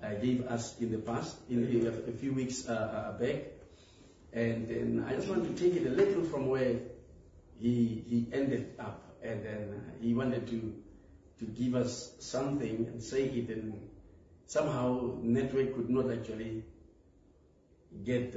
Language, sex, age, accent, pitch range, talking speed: English, male, 50-69, South African, 100-125 Hz, 155 wpm